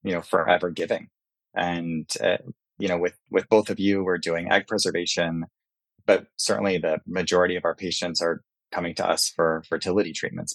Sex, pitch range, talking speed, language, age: male, 85-95 Hz, 175 wpm, English, 20-39